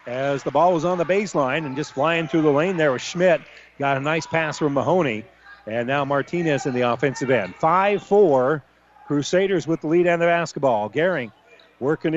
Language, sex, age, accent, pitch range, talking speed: English, male, 40-59, American, 145-180 Hz, 190 wpm